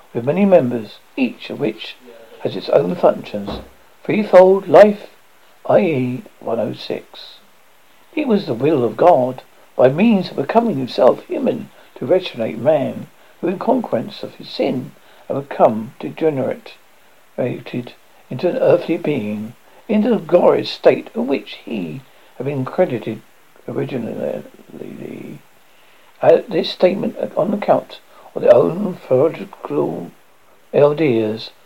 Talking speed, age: 120 wpm, 60-79